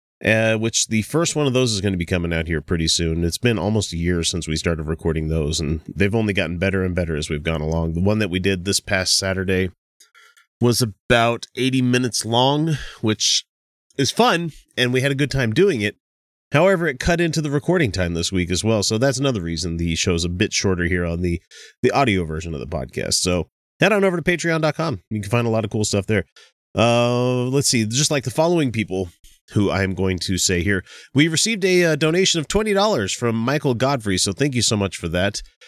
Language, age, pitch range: English, 30-49, 95-145 Hz